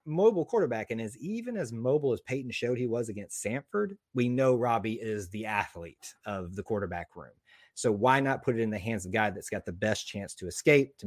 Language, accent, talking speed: English, American, 235 wpm